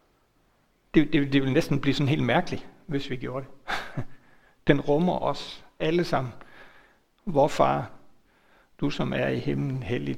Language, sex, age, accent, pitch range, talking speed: Danish, male, 60-79, native, 125-155 Hz, 155 wpm